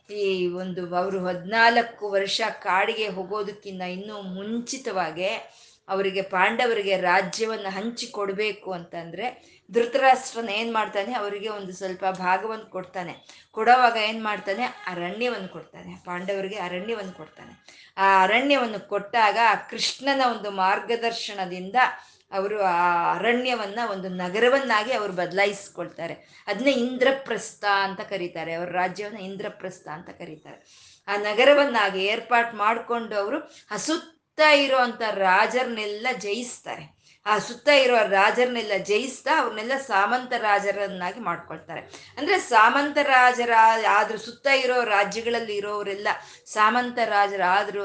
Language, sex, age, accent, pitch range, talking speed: Kannada, female, 20-39, native, 195-240 Hz, 100 wpm